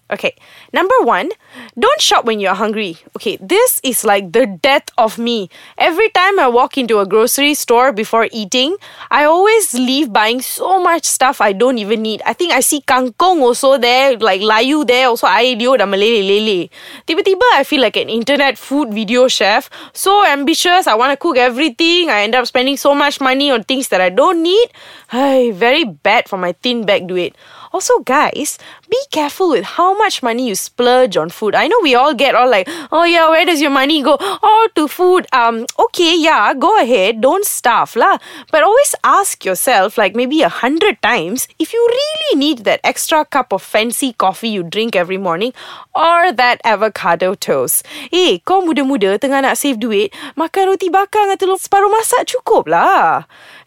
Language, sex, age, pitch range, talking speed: English, female, 20-39, 230-350 Hz, 190 wpm